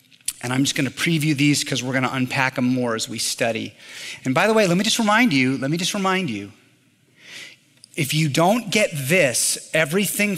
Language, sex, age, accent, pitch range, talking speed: English, male, 30-49, American, 130-170 Hz, 200 wpm